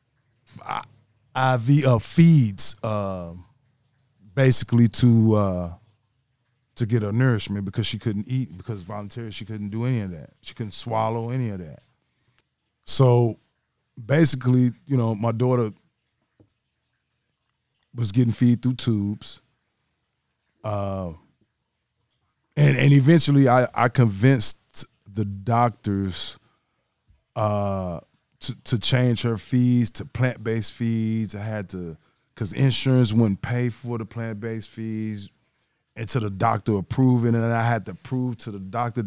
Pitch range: 105-125 Hz